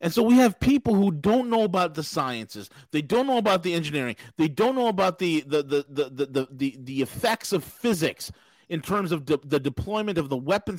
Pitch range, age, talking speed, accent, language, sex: 165-250 Hz, 40-59, 220 wpm, American, English, male